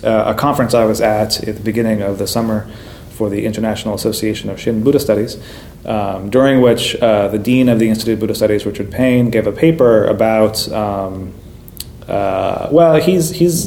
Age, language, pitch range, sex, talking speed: 30-49, English, 110-120 Hz, male, 185 wpm